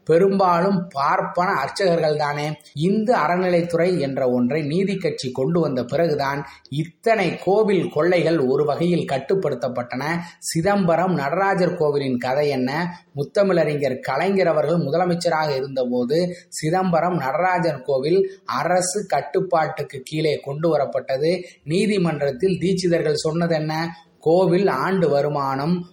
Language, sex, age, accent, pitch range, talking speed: Tamil, male, 20-39, native, 140-180 Hz, 100 wpm